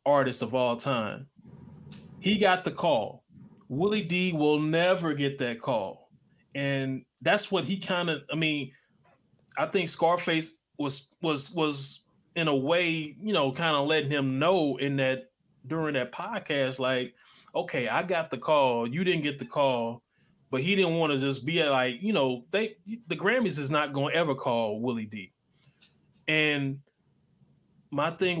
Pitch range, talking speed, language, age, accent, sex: 130-170 Hz, 165 wpm, English, 20-39, American, male